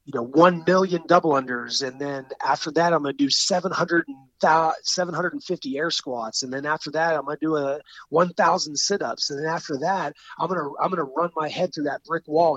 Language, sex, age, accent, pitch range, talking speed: English, male, 30-49, American, 125-155 Hz, 235 wpm